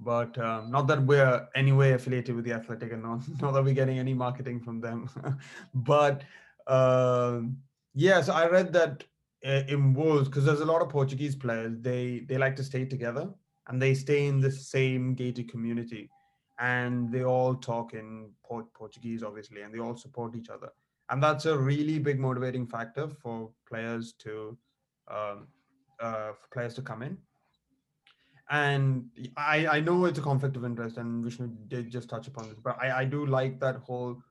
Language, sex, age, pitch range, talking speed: English, male, 20-39, 120-140 Hz, 185 wpm